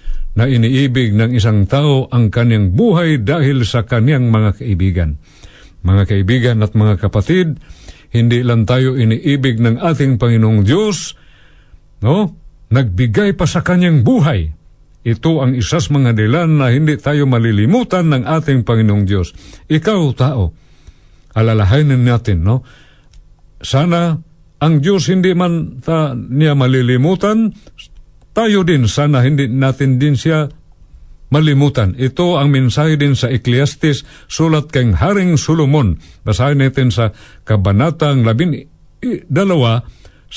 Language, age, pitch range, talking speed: Filipino, 50-69, 110-150 Hz, 120 wpm